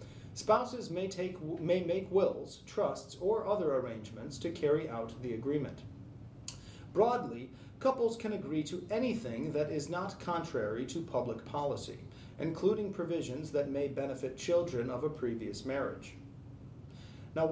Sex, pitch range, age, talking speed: male, 125-170 Hz, 30-49, 135 wpm